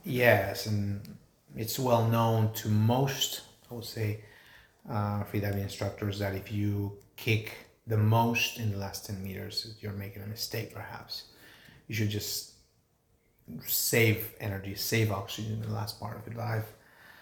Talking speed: 145 wpm